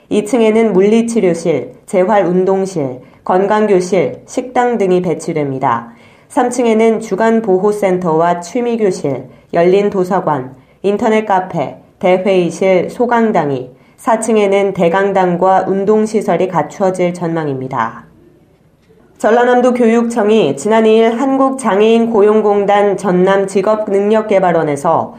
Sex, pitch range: female, 175-220 Hz